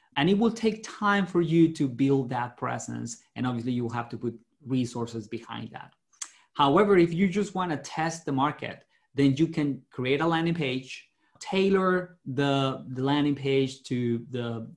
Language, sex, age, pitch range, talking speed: English, male, 30-49, 120-155 Hz, 175 wpm